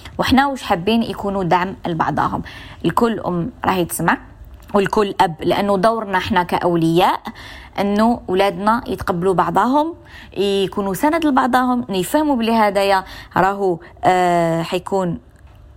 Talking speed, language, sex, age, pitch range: 115 wpm, Arabic, female, 20-39, 180-230 Hz